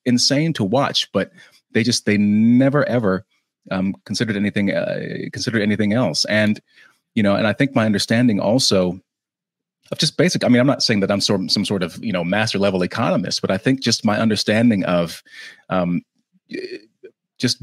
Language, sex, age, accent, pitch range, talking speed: English, male, 30-49, American, 95-120 Hz, 180 wpm